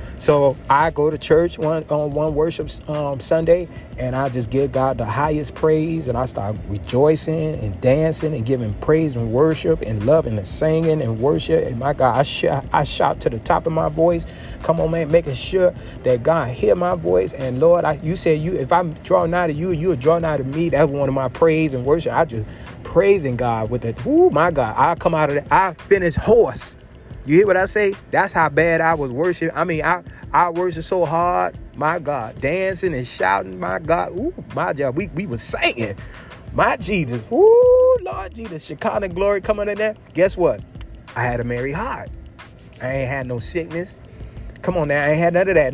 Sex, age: male, 30-49